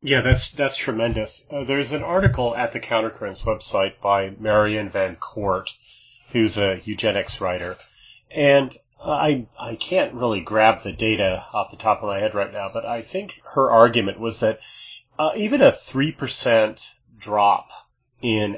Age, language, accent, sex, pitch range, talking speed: 30-49, English, American, male, 100-125 Hz, 160 wpm